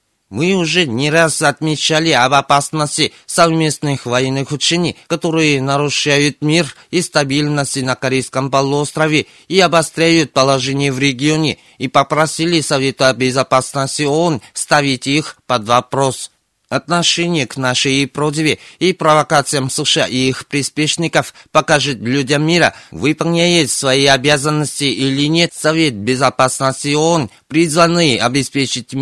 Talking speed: 115 wpm